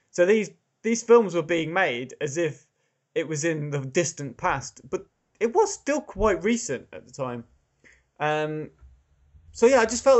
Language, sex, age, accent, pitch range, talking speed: English, male, 20-39, British, 135-195 Hz, 175 wpm